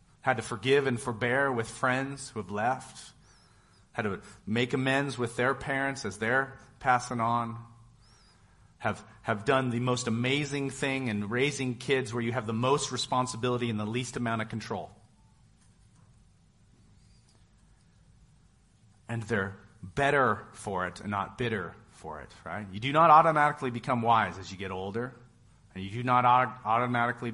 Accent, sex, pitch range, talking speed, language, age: American, male, 105-135 Hz, 155 wpm, English, 40-59